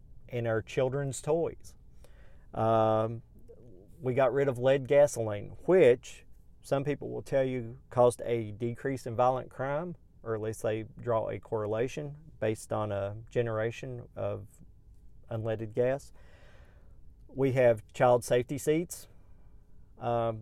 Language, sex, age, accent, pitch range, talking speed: English, male, 40-59, American, 110-135 Hz, 125 wpm